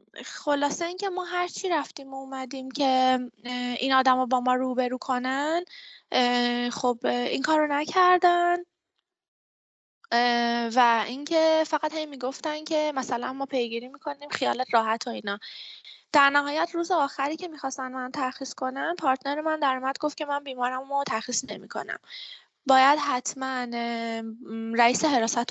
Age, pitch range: 20-39, 240-310 Hz